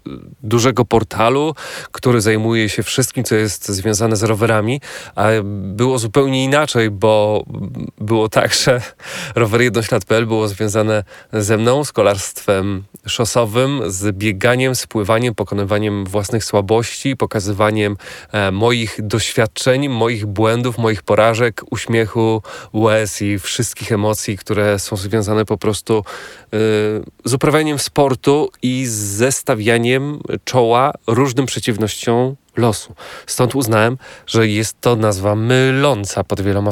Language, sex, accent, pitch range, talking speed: Polish, male, native, 105-125 Hz, 110 wpm